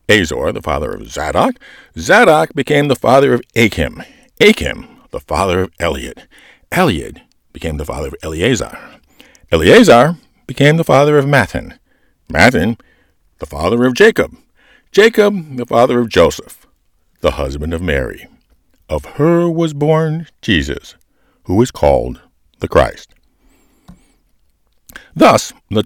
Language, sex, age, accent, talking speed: English, male, 60-79, American, 125 wpm